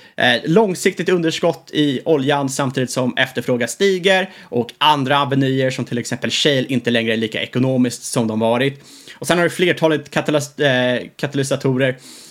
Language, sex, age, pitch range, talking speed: Swedish, male, 20-39, 120-150 Hz, 155 wpm